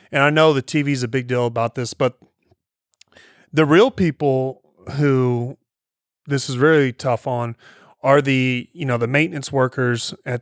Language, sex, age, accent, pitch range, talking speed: English, male, 30-49, American, 125-155 Hz, 165 wpm